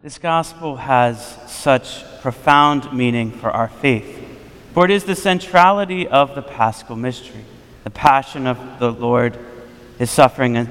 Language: English